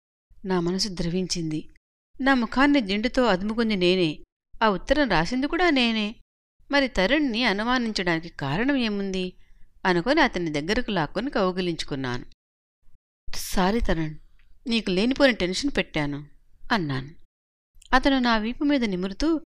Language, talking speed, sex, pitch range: Telugu, 100 wpm, female, 175-250 Hz